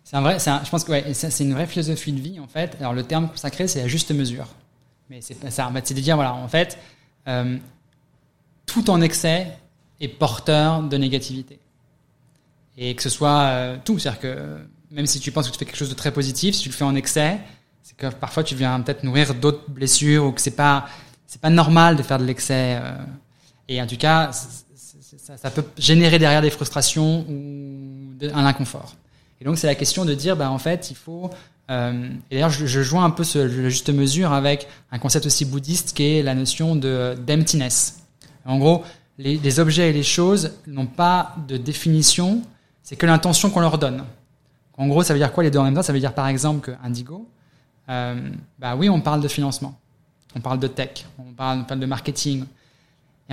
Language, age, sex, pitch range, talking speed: French, 20-39, male, 135-160 Hz, 220 wpm